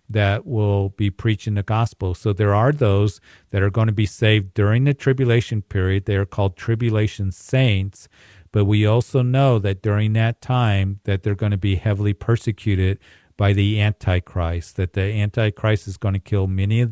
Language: English